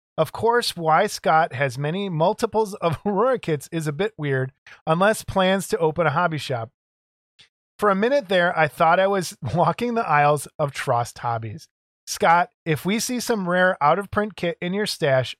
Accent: American